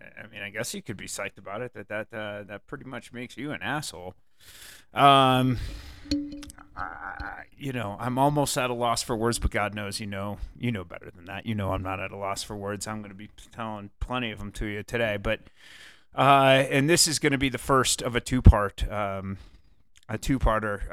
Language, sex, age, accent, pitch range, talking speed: English, male, 30-49, American, 100-125 Hz, 230 wpm